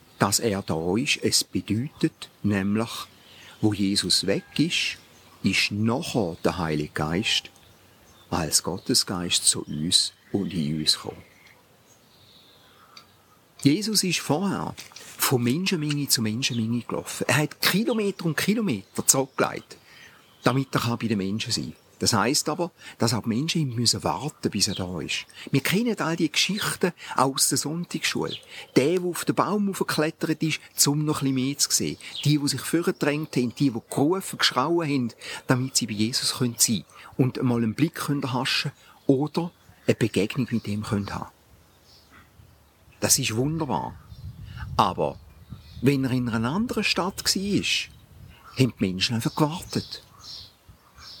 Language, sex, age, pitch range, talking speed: German, male, 50-69, 110-155 Hz, 145 wpm